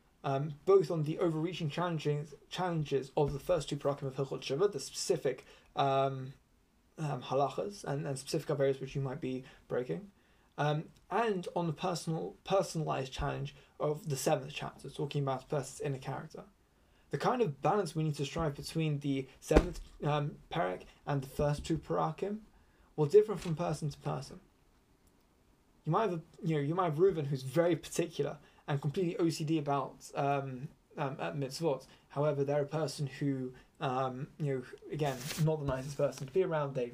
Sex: male